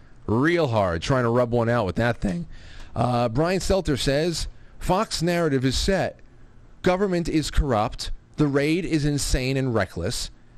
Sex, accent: male, American